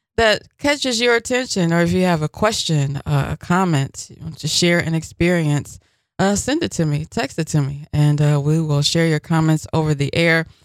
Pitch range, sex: 145-185 Hz, female